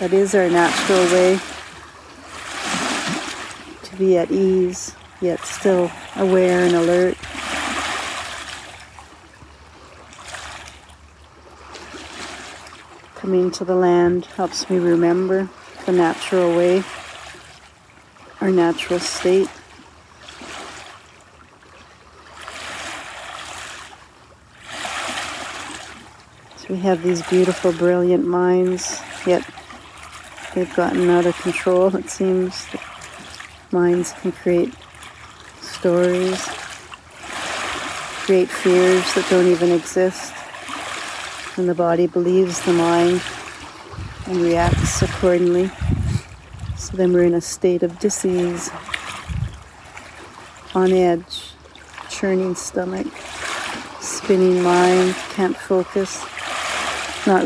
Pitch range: 170-185 Hz